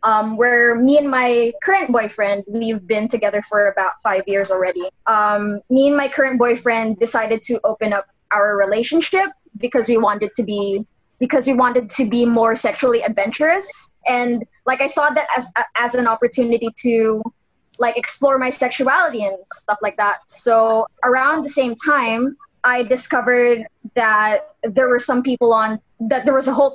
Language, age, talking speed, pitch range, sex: English, 20-39, 170 wpm, 220-275 Hz, female